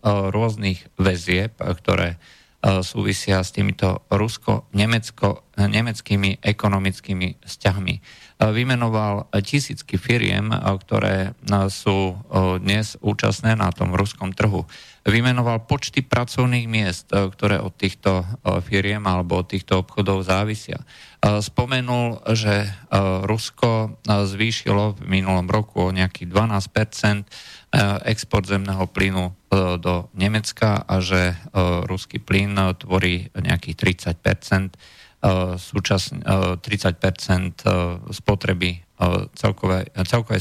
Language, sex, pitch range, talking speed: Slovak, male, 95-110 Hz, 85 wpm